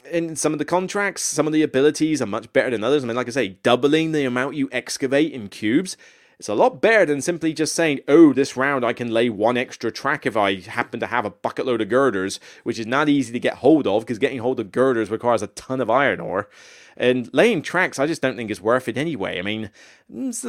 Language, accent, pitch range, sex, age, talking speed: English, British, 120-160 Hz, male, 30-49, 250 wpm